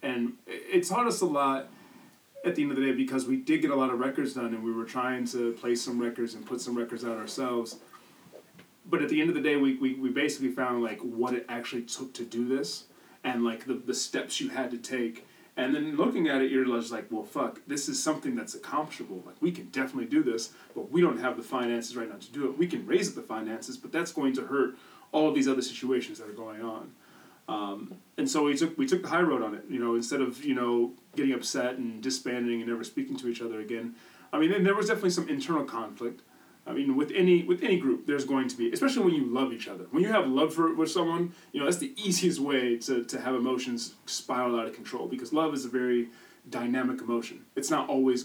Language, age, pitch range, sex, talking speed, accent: English, 30-49, 120-165 Hz, male, 250 wpm, American